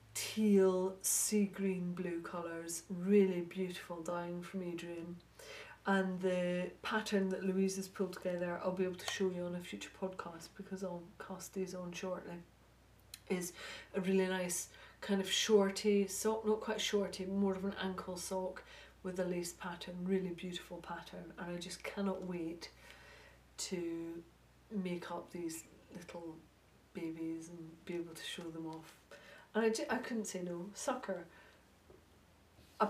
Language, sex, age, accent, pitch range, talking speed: English, female, 40-59, British, 175-200 Hz, 150 wpm